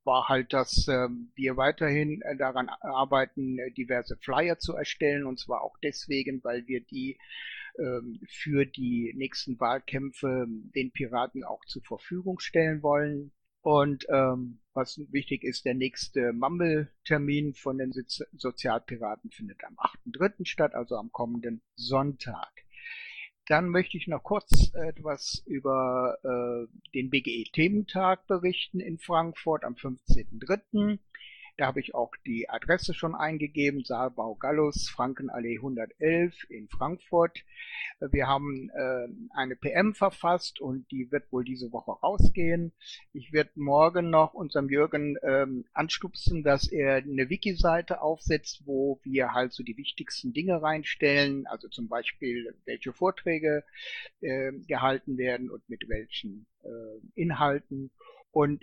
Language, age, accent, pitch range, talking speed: German, 60-79, German, 130-160 Hz, 125 wpm